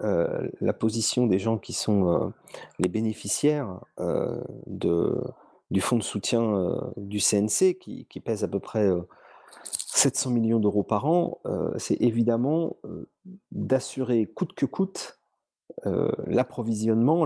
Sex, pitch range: male, 105-140 Hz